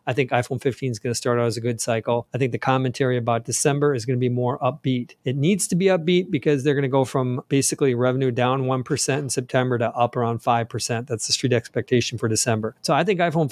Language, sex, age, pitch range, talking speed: English, male, 40-59, 120-140 Hz, 250 wpm